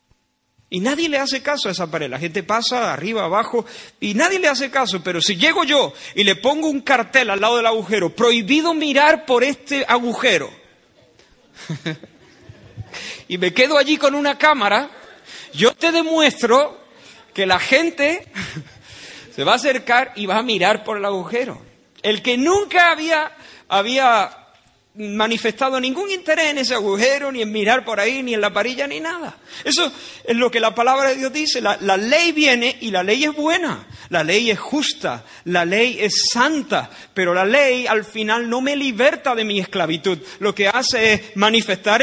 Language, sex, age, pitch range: Spanish, male, 50-69, 210-285 Hz